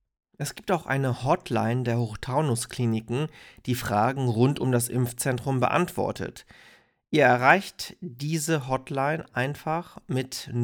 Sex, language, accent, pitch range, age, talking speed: male, German, German, 120-150 Hz, 40-59, 115 wpm